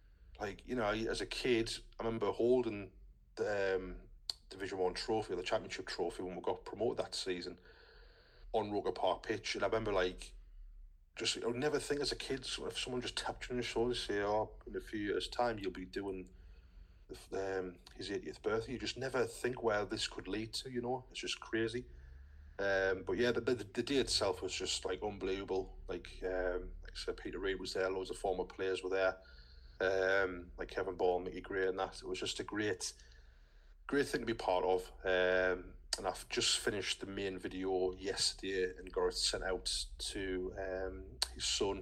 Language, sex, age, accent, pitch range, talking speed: English, male, 30-49, British, 90-105 Hz, 205 wpm